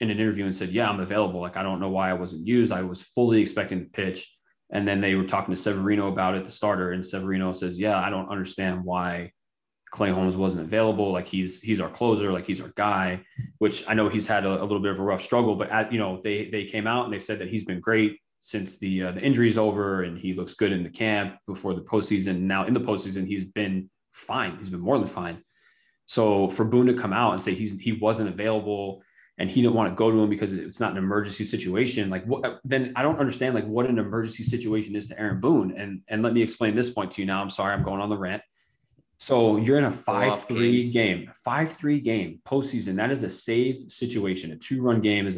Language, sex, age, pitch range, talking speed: English, male, 20-39, 95-115 Hz, 250 wpm